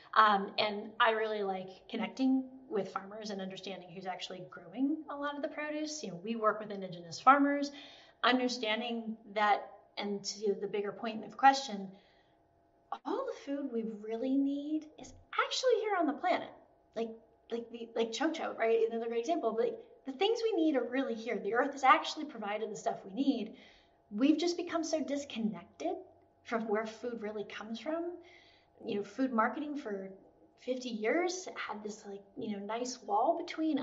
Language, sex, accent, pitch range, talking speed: English, female, American, 210-295 Hz, 180 wpm